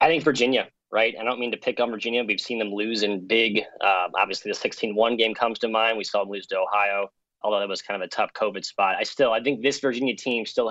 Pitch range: 105-120 Hz